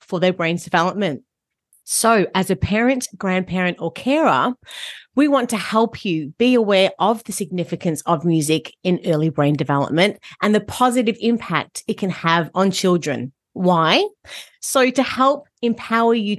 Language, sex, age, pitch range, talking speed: English, female, 40-59, 175-220 Hz, 155 wpm